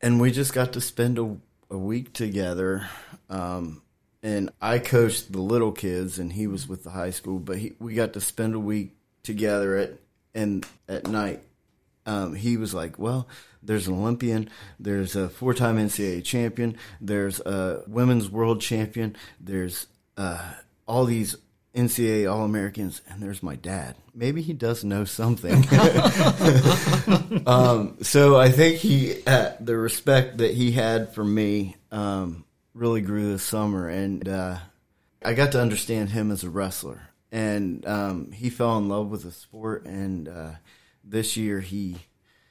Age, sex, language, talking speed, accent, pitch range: 30-49, male, English, 160 wpm, American, 95-115 Hz